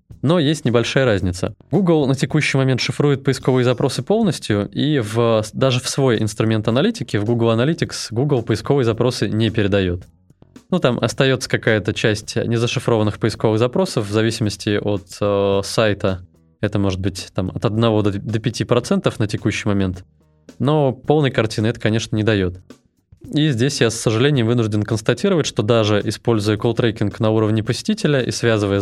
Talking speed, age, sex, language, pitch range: 150 wpm, 20-39, male, Russian, 105-130 Hz